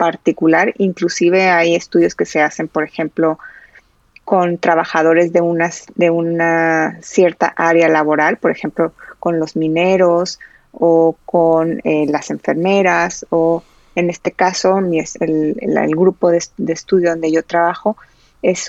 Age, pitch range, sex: 20-39, 165-190 Hz, female